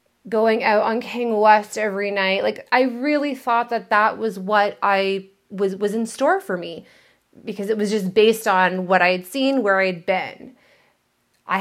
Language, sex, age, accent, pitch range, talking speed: English, female, 30-49, American, 195-245 Hz, 190 wpm